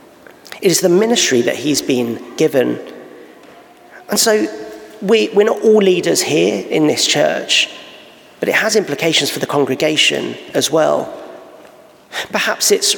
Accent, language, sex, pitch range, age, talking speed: British, English, male, 140-190 Hz, 40-59, 140 wpm